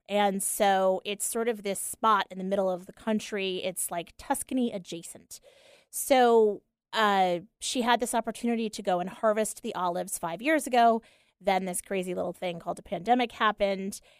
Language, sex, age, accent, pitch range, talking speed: English, female, 30-49, American, 180-220 Hz, 175 wpm